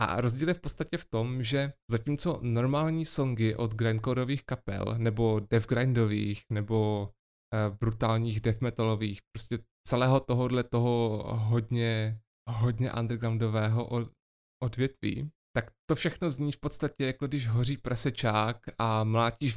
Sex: male